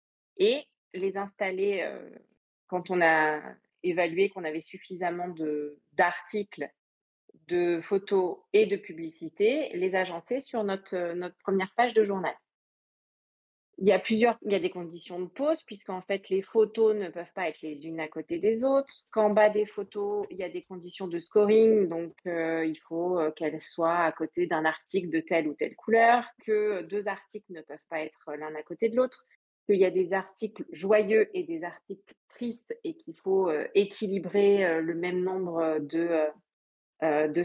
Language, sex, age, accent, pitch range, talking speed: French, female, 30-49, French, 165-215 Hz, 180 wpm